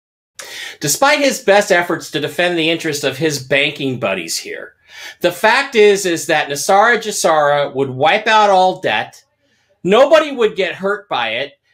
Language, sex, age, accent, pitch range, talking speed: English, male, 40-59, American, 165-230 Hz, 160 wpm